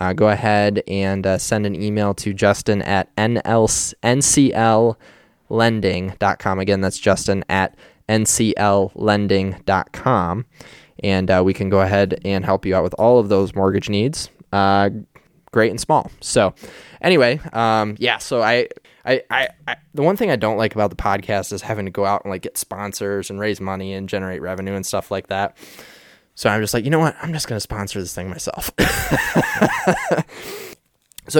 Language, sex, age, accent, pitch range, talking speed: English, male, 10-29, American, 100-115 Hz, 170 wpm